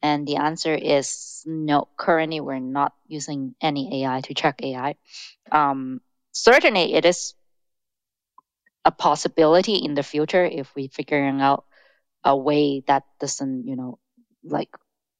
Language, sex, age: English, female, 20-39